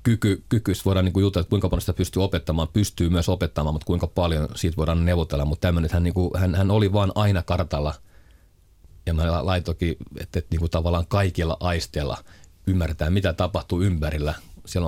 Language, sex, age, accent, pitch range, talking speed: Finnish, male, 40-59, native, 80-95 Hz, 190 wpm